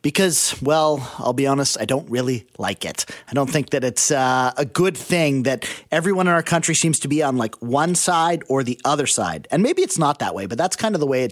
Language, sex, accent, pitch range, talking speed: English, male, American, 140-195 Hz, 255 wpm